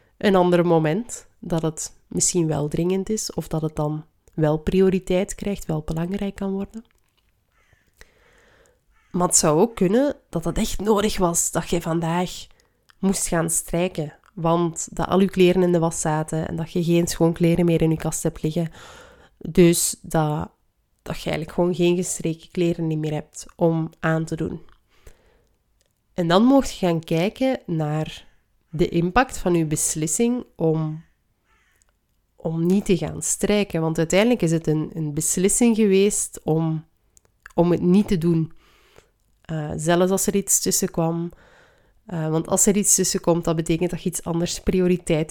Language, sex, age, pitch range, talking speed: Dutch, female, 20-39, 165-195 Hz, 165 wpm